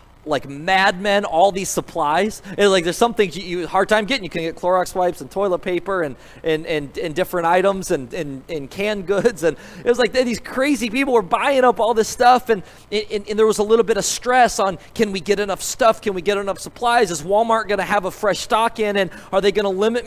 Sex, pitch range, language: male, 175-215 Hz, English